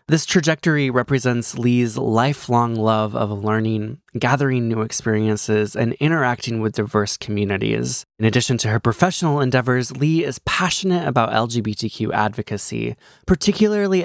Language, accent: English, American